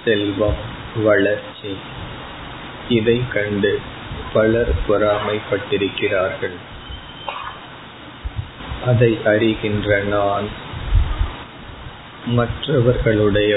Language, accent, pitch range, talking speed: Tamil, native, 100-110 Hz, 45 wpm